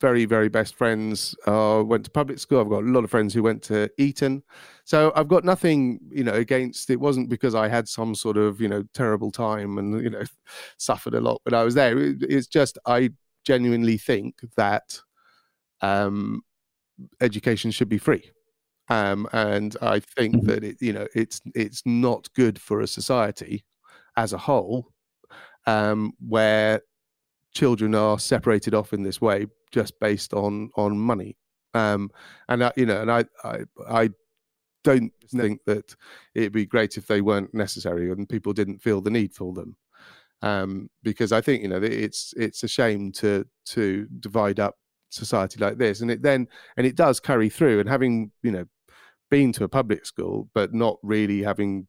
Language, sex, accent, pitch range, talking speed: English, male, British, 105-120 Hz, 180 wpm